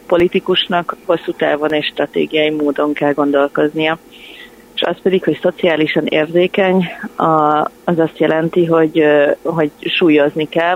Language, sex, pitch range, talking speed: Hungarian, female, 145-165 Hz, 115 wpm